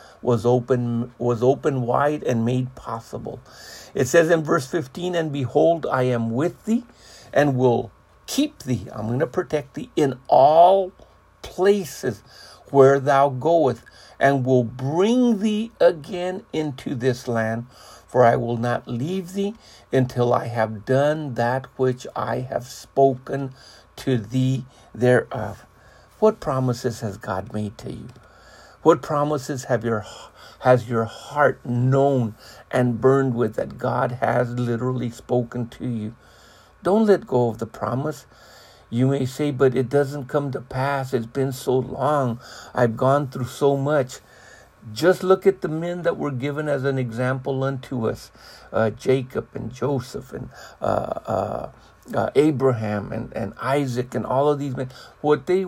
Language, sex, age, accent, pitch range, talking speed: English, male, 60-79, American, 120-150 Hz, 155 wpm